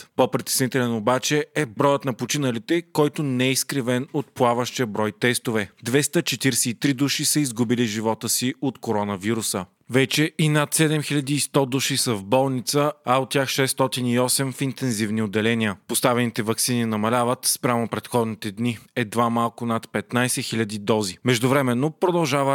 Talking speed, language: 135 wpm, Bulgarian